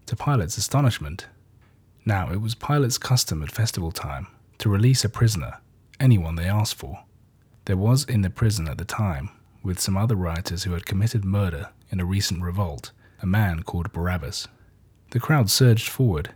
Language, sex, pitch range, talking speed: English, male, 95-115 Hz, 170 wpm